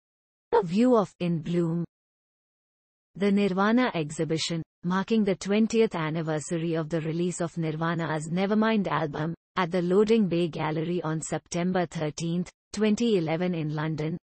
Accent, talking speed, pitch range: Indian, 125 wpm, 160-195 Hz